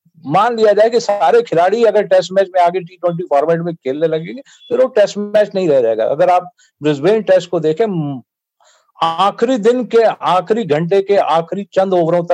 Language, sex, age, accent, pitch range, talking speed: Hindi, male, 50-69, native, 155-195 Hz, 75 wpm